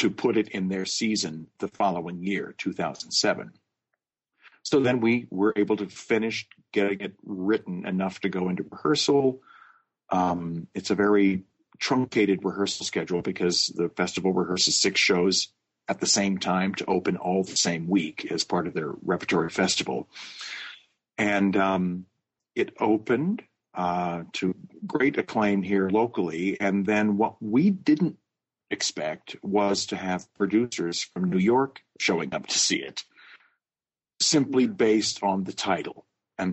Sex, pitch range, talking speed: male, 95-110 Hz, 145 wpm